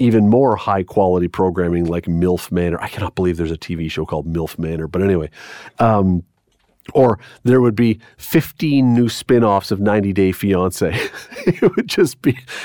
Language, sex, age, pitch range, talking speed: English, male, 40-59, 95-125 Hz, 165 wpm